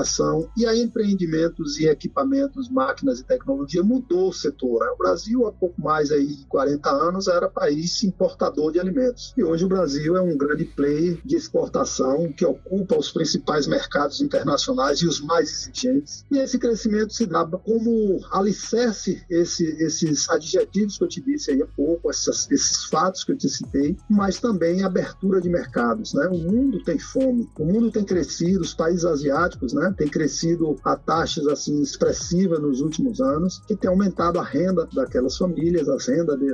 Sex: male